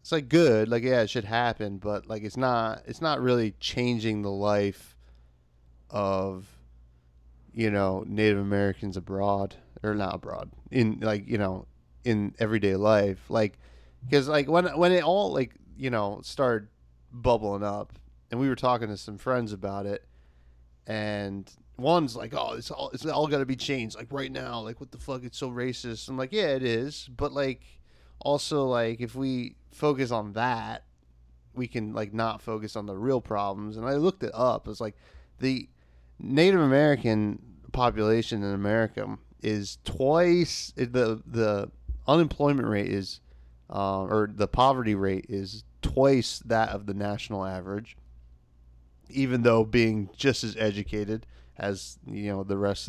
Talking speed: 165 wpm